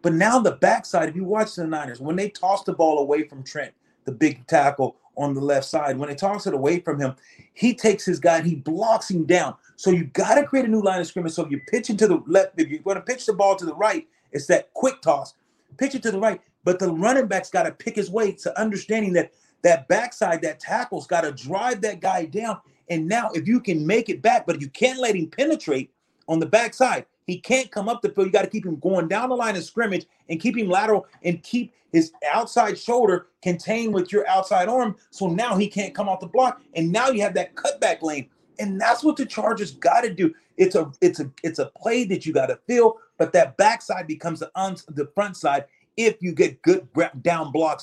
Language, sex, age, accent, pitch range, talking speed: English, male, 30-49, American, 165-225 Hz, 245 wpm